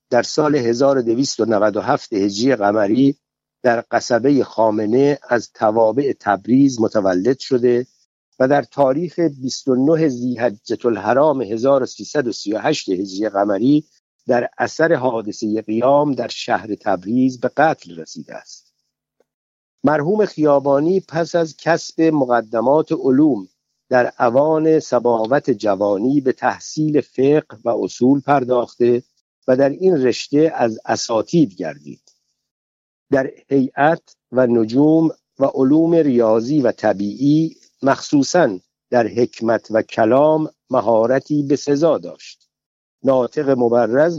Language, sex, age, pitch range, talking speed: Persian, male, 60-79, 115-145 Hz, 105 wpm